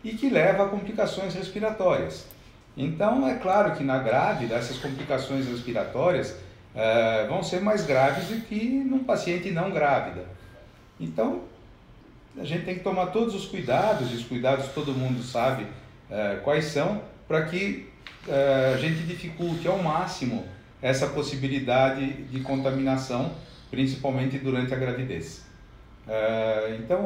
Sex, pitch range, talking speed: male, 125-170 Hz, 135 wpm